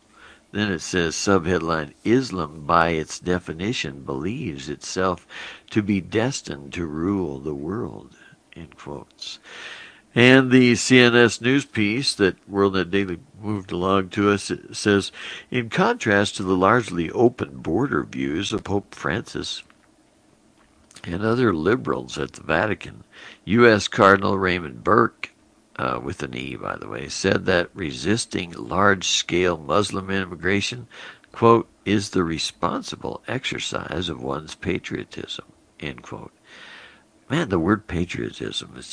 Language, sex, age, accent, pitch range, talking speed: English, male, 60-79, American, 85-110 Hz, 130 wpm